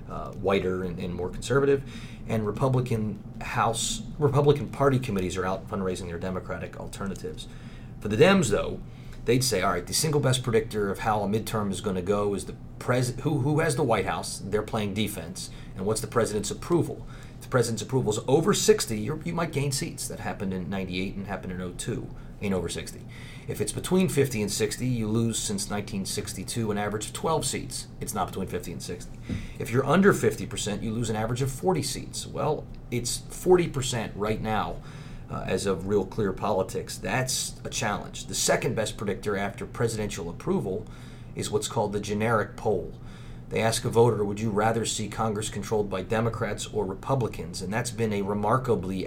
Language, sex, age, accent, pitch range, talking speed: English, male, 30-49, American, 100-125 Hz, 190 wpm